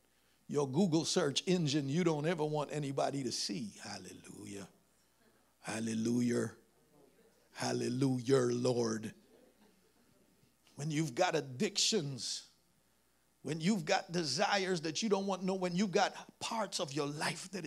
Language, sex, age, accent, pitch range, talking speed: English, male, 50-69, American, 130-195 Hz, 120 wpm